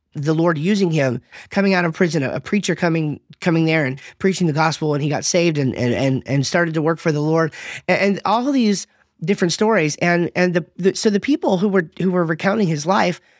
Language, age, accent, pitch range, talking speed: English, 30-49, American, 145-185 Hz, 230 wpm